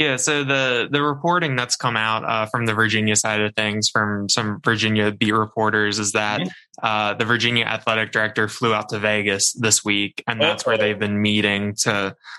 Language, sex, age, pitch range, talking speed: English, male, 10-29, 105-120 Hz, 195 wpm